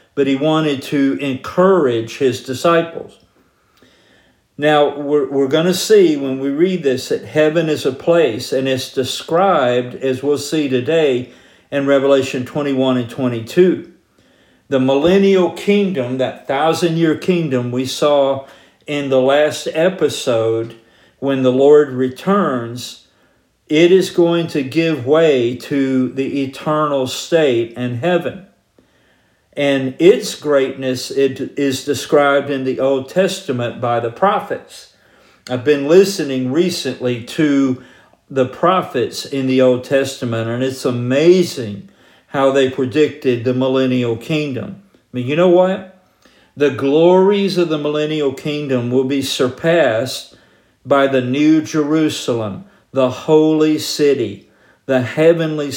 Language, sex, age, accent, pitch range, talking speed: English, male, 50-69, American, 130-155 Hz, 130 wpm